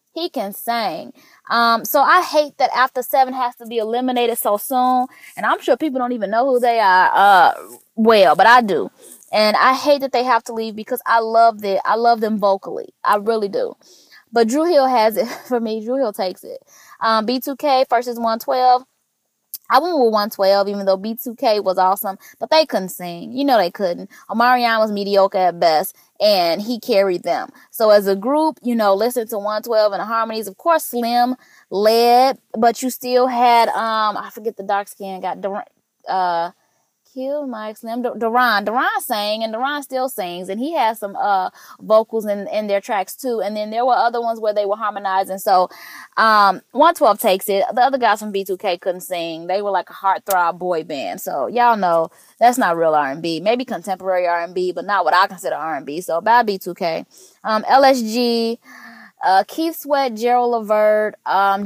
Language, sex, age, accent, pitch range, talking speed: English, female, 20-39, American, 200-255 Hz, 190 wpm